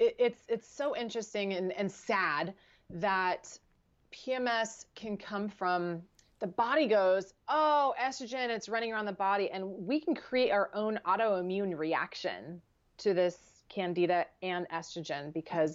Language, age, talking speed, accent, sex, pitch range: English, 30-49, 135 wpm, American, female, 170-225 Hz